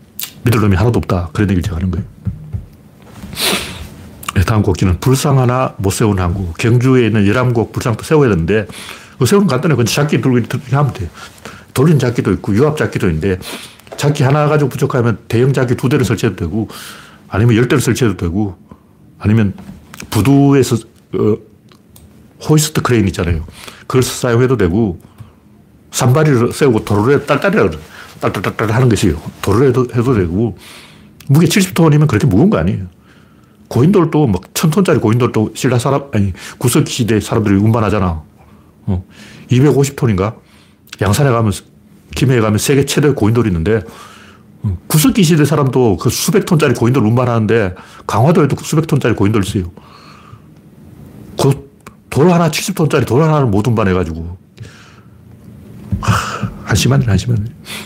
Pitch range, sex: 100-140 Hz, male